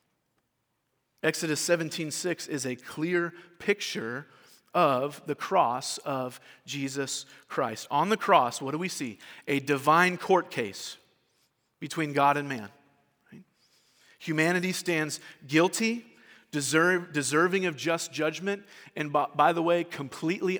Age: 40-59